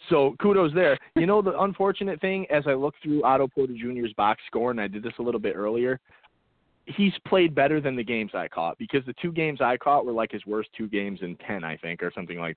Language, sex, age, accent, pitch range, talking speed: English, male, 30-49, American, 110-140 Hz, 250 wpm